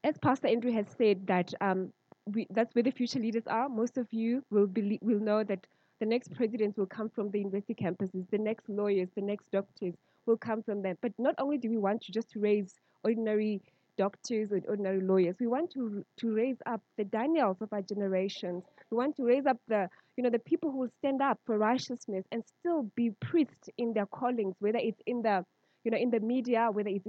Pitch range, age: 205-245 Hz, 20-39